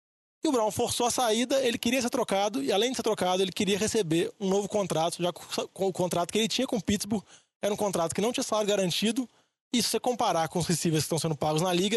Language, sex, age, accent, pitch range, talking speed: Portuguese, male, 20-39, Brazilian, 175-230 Hz, 260 wpm